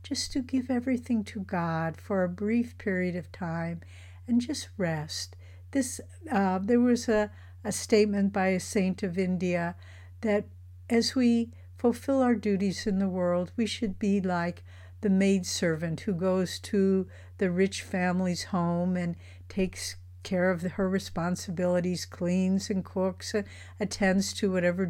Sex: female